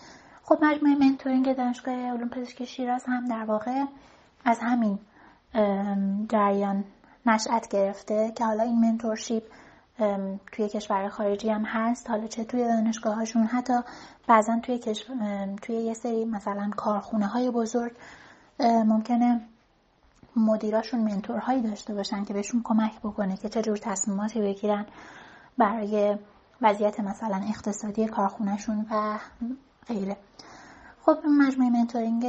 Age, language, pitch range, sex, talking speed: 30-49, Persian, 210-245 Hz, female, 120 wpm